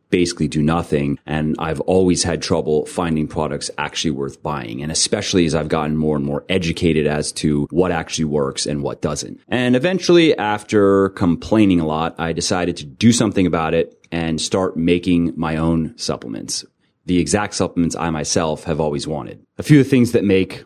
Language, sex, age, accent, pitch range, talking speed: English, male, 30-49, American, 80-95 Hz, 185 wpm